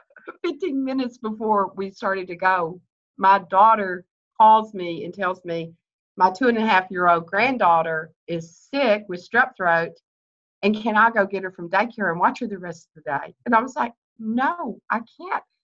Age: 50-69